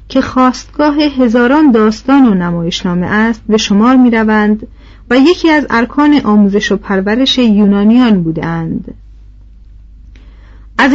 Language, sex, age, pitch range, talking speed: Persian, female, 40-59, 200-260 Hz, 115 wpm